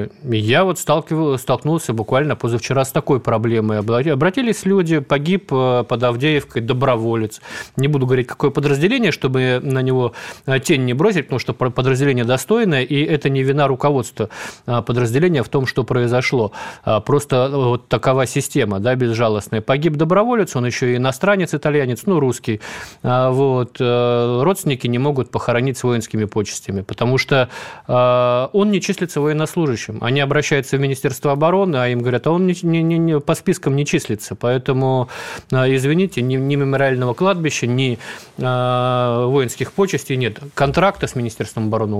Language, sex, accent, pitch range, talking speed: Russian, male, native, 115-145 Hz, 135 wpm